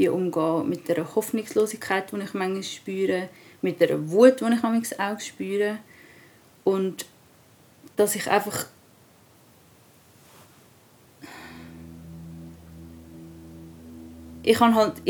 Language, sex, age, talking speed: German, female, 30-49, 80 wpm